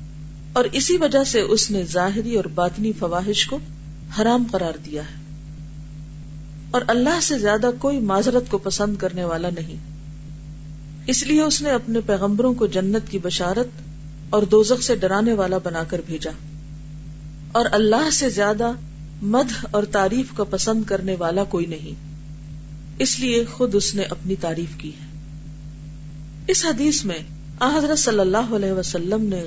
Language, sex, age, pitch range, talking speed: Urdu, female, 40-59, 150-220 Hz, 155 wpm